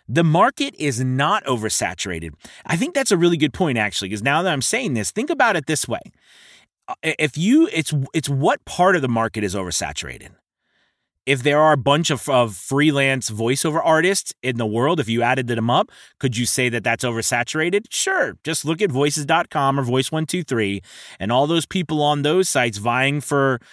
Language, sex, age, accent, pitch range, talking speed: English, male, 30-49, American, 115-155 Hz, 190 wpm